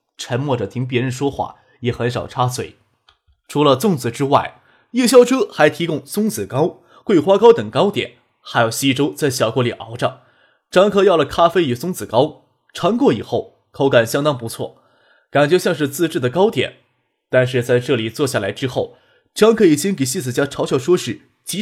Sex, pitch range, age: male, 125-195 Hz, 20-39